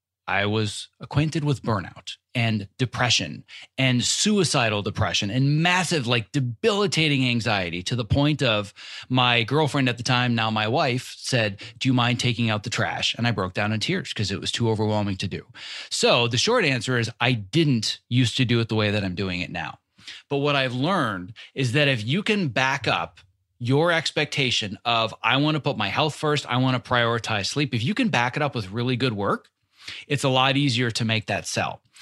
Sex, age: male, 30-49